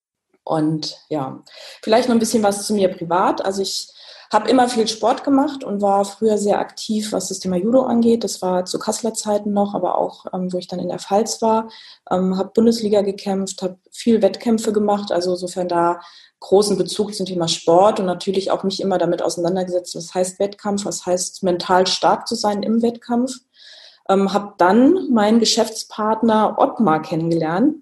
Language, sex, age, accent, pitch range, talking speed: German, female, 20-39, German, 180-220 Hz, 180 wpm